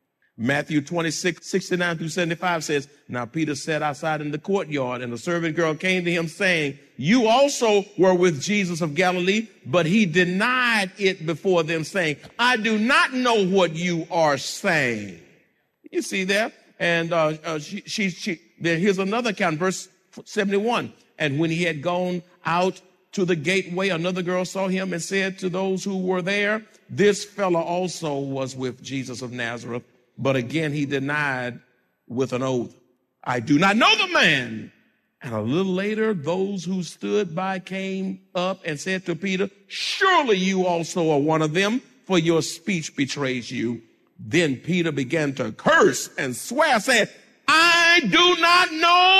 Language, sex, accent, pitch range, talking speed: English, male, American, 150-195 Hz, 165 wpm